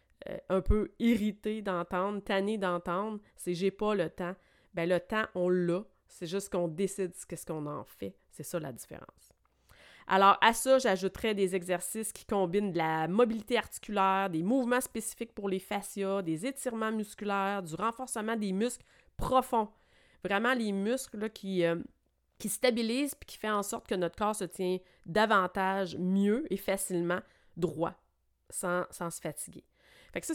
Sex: female